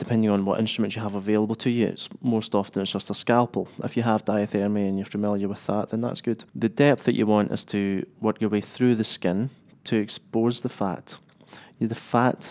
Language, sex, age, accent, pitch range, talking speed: English, male, 20-39, British, 100-120 Hz, 225 wpm